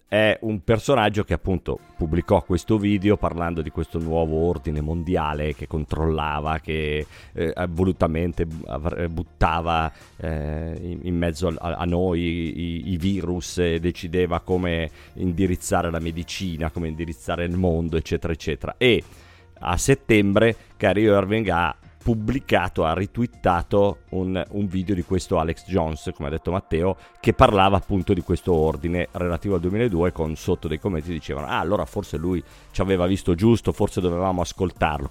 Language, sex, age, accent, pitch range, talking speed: Italian, male, 30-49, native, 80-100 Hz, 150 wpm